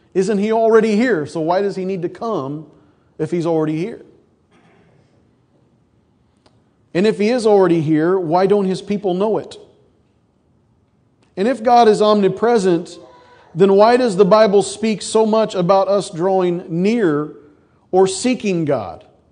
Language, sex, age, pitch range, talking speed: English, male, 40-59, 160-205 Hz, 145 wpm